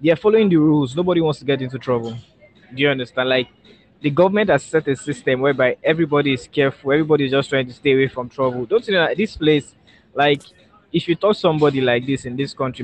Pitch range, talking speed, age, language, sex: 130-155 Hz, 230 wpm, 20-39, English, male